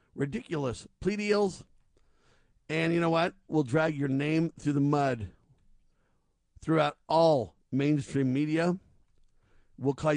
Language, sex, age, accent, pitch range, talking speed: English, male, 50-69, American, 140-170 Hz, 120 wpm